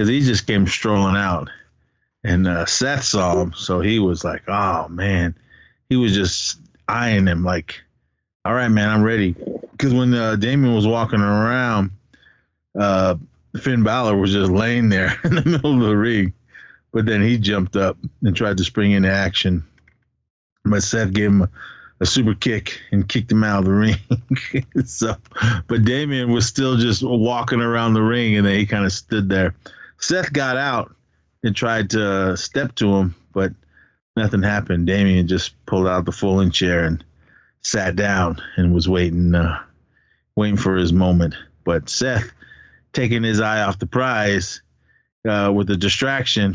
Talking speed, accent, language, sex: 170 wpm, American, English, male